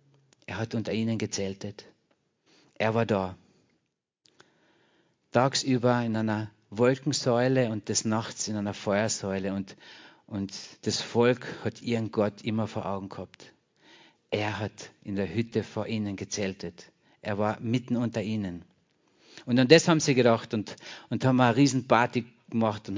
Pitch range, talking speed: 105-120 Hz, 145 wpm